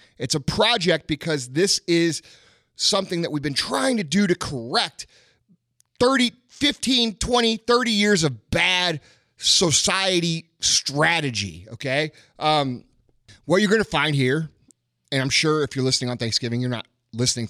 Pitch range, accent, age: 120-165 Hz, American, 30-49